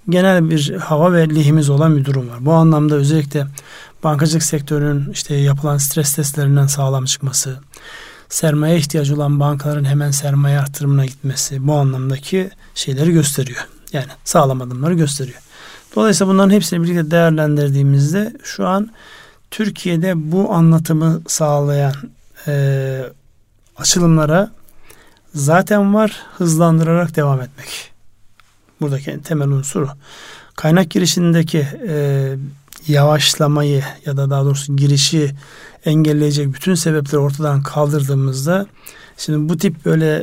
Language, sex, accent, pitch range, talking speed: Turkish, male, native, 140-165 Hz, 110 wpm